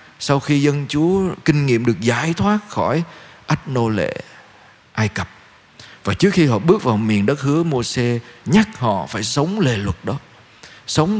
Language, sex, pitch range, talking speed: Vietnamese, male, 115-155 Hz, 180 wpm